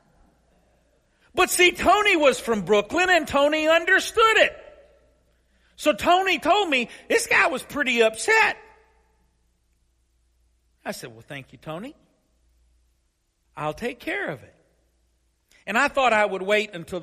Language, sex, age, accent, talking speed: English, male, 50-69, American, 130 wpm